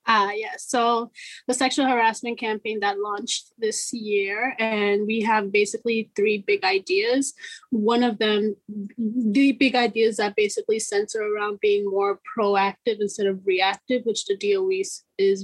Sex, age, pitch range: female, 20-39, 205-265 Hz